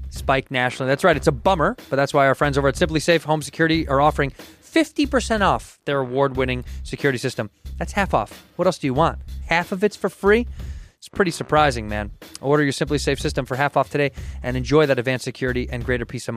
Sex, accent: male, American